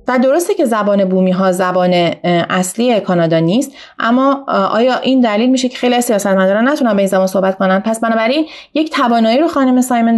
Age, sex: 30-49, female